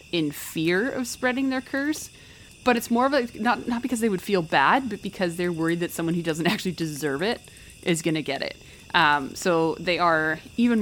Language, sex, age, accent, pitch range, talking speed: English, female, 30-49, American, 150-180 Hz, 210 wpm